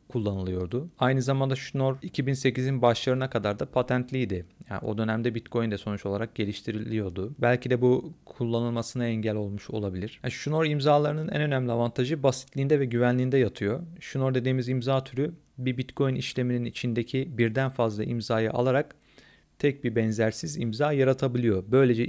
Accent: native